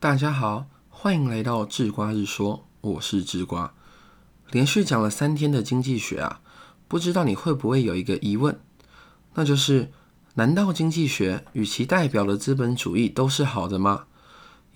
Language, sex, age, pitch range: Chinese, male, 20-39, 105-145 Hz